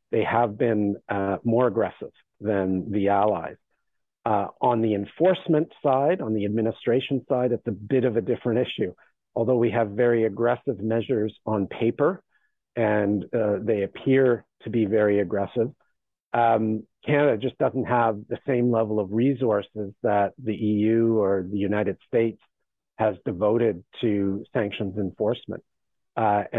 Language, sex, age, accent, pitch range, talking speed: English, male, 50-69, American, 100-115 Hz, 145 wpm